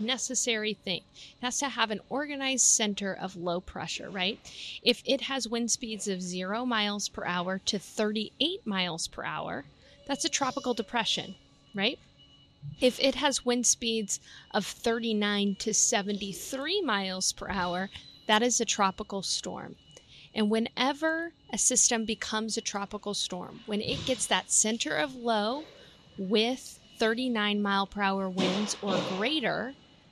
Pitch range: 190-235 Hz